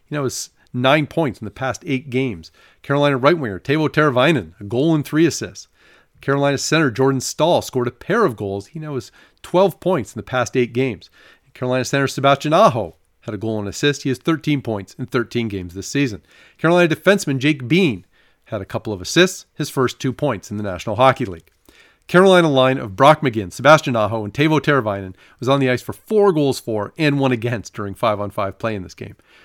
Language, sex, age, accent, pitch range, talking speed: English, male, 40-59, American, 105-145 Hz, 210 wpm